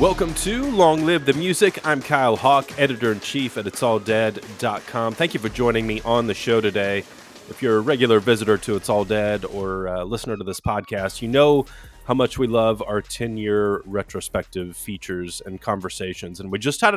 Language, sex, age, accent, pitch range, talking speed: English, male, 30-49, American, 95-115 Hz, 185 wpm